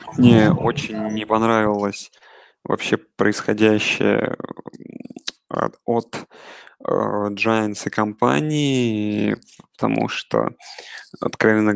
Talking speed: 75 wpm